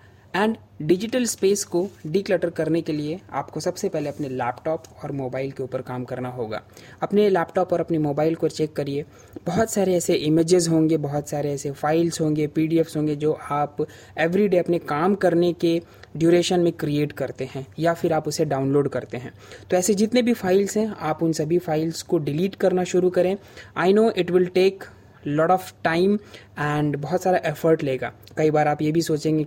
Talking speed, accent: 190 wpm, native